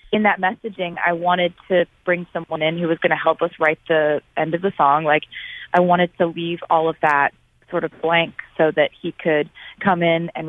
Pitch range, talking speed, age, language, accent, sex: 160-200 Hz, 225 wpm, 20-39, English, American, female